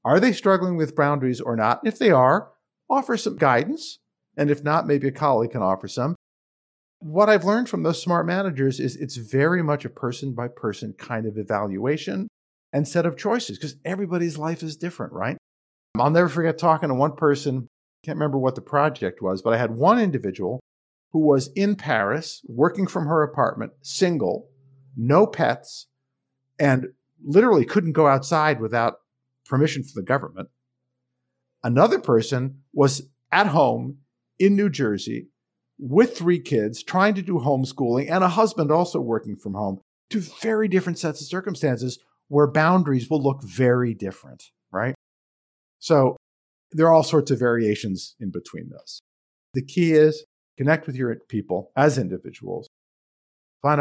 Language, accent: English, American